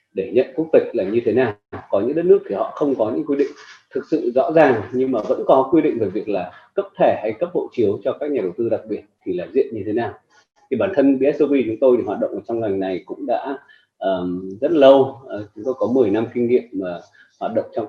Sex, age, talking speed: male, 20-39, 270 wpm